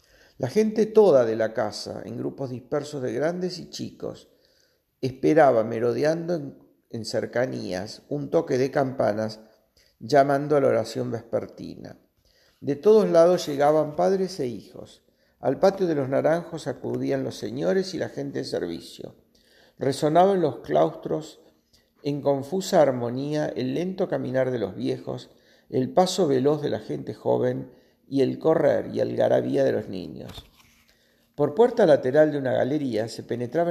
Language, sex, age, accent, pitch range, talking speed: Spanish, male, 50-69, Argentinian, 125-160 Hz, 145 wpm